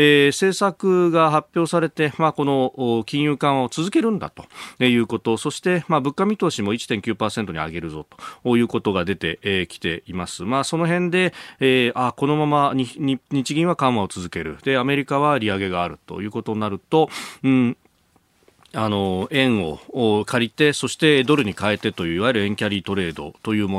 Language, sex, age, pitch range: Japanese, male, 40-59, 100-145 Hz